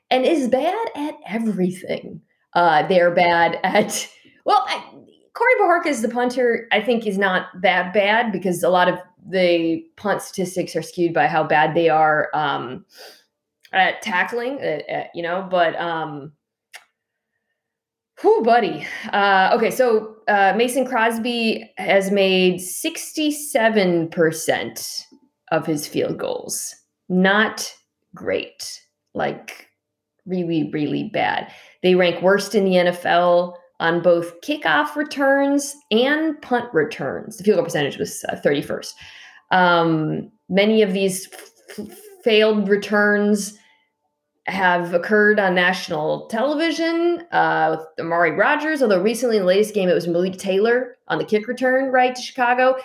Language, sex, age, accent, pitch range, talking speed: English, female, 20-39, American, 170-245 Hz, 135 wpm